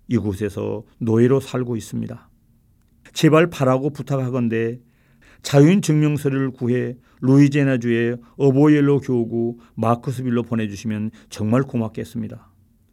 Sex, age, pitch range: male, 40-59, 115-130 Hz